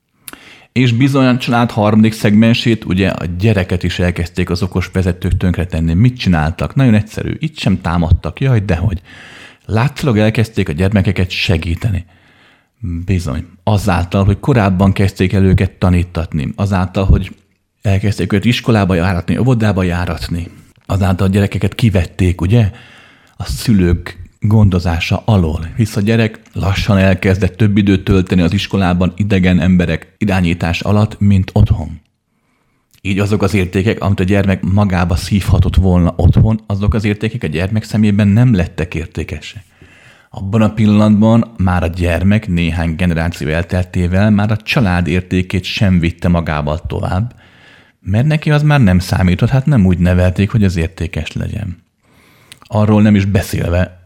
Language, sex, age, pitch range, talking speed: Hungarian, male, 30-49, 90-110 Hz, 140 wpm